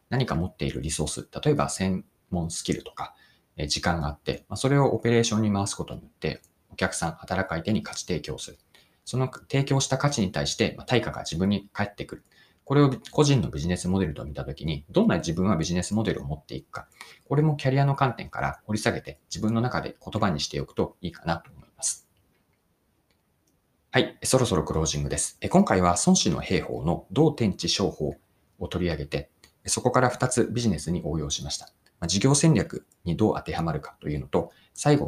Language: Japanese